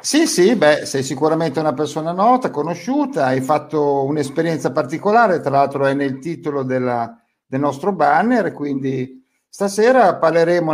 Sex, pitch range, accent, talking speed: male, 145-210 Hz, native, 140 wpm